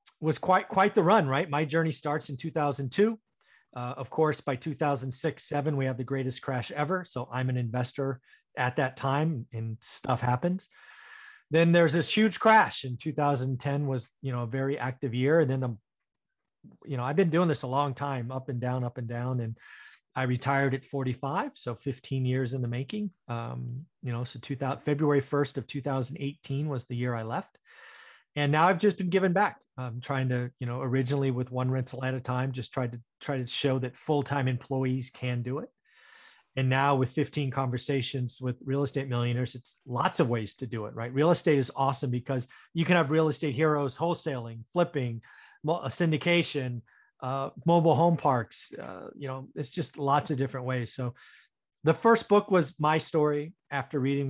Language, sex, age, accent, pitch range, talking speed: English, male, 30-49, American, 125-155 Hz, 190 wpm